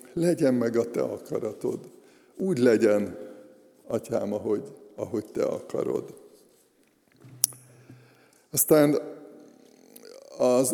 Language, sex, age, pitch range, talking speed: Hungarian, male, 60-79, 125-145 Hz, 80 wpm